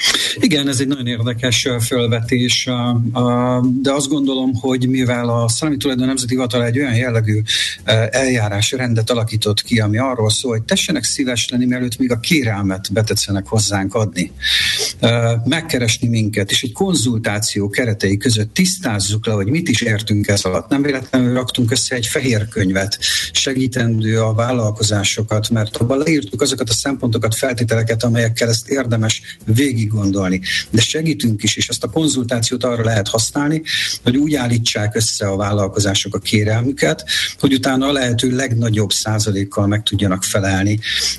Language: Hungarian